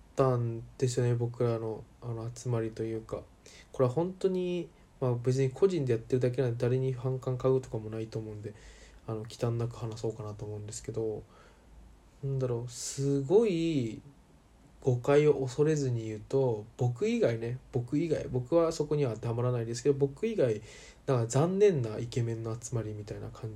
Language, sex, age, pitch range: Japanese, male, 20-39, 110-140 Hz